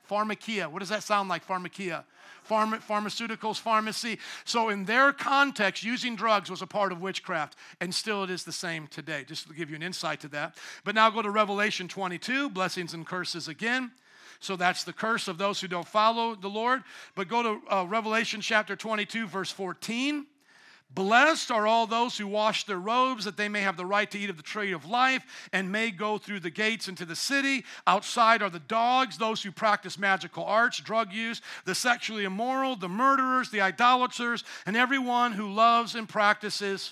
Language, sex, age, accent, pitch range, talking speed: English, male, 50-69, American, 195-245 Hz, 195 wpm